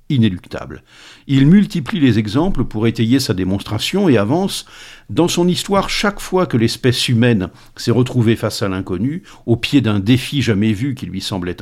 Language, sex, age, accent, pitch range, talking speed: French, male, 50-69, French, 105-145 Hz, 170 wpm